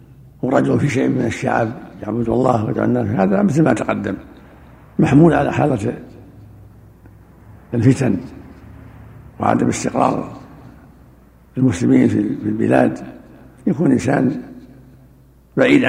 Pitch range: 110-155 Hz